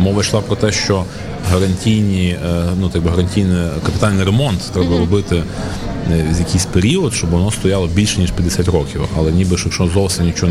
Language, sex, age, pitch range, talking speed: Ukrainian, male, 30-49, 85-100 Hz, 165 wpm